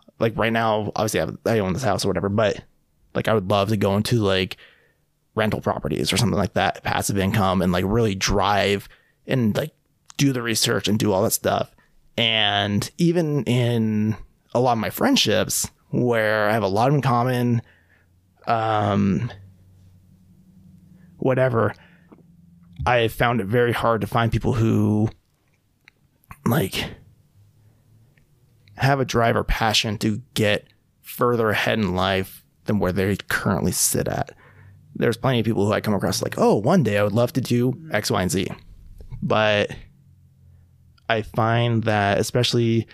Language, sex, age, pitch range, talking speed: English, male, 20-39, 100-120 Hz, 155 wpm